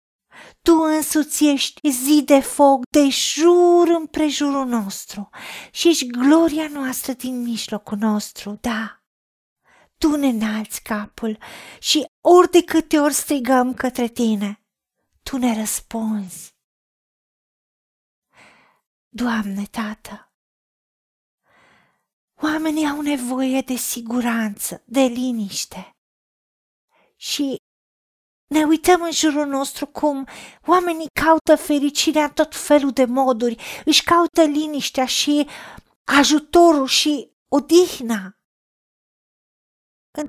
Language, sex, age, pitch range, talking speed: Romanian, female, 40-59, 240-305 Hz, 100 wpm